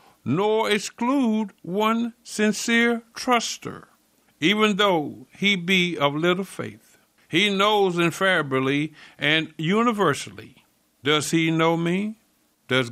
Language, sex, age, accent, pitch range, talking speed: English, male, 60-79, American, 115-190 Hz, 100 wpm